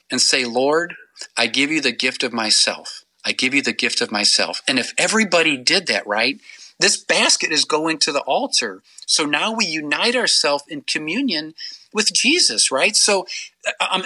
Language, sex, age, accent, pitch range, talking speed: English, male, 40-59, American, 135-200 Hz, 180 wpm